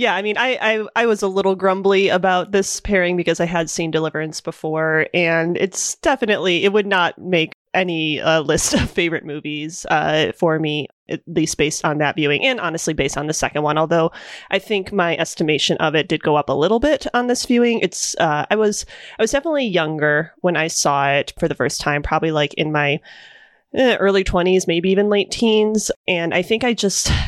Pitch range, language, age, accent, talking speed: 155-195 Hz, English, 30-49, American, 210 wpm